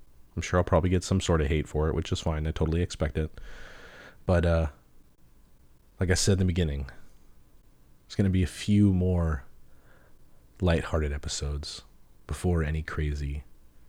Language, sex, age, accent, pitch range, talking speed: English, male, 30-49, American, 70-95 Hz, 165 wpm